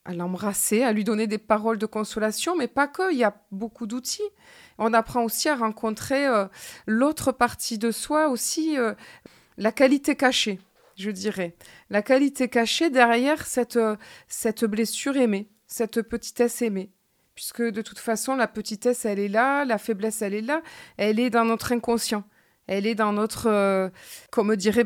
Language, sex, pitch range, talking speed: French, female, 215-260 Hz, 175 wpm